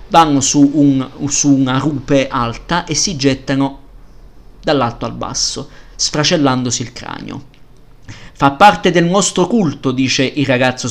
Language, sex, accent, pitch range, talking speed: Italian, male, native, 120-150 Hz, 125 wpm